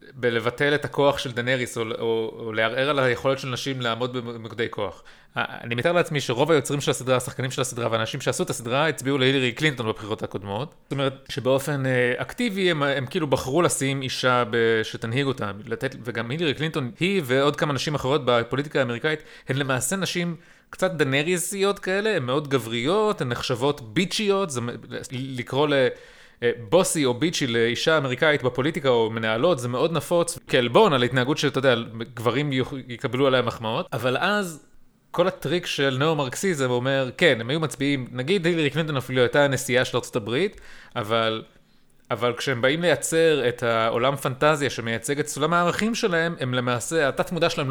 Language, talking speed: Hebrew, 170 wpm